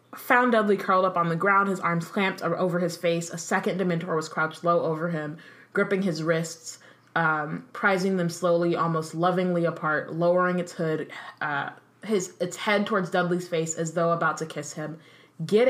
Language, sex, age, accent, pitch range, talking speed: English, female, 20-39, American, 160-190 Hz, 185 wpm